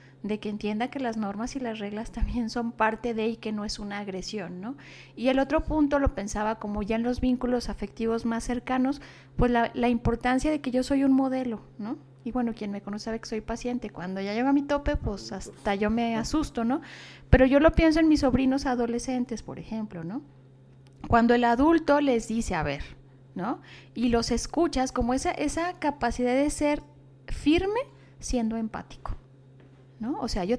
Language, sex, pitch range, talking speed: Spanish, female, 210-265 Hz, 195 wpm